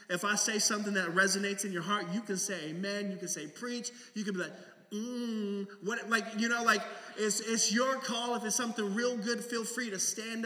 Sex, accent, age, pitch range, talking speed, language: male, American, 20-39, 195-240 Hz, 230 wpm, English